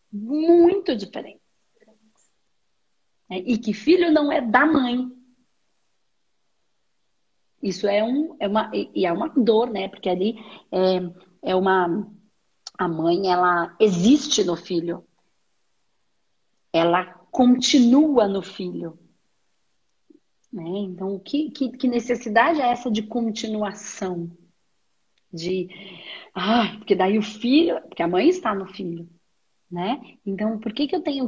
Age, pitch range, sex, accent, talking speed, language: 40-59, 190-250 Hz, female, Brazilian, 125 wpm, Portuguese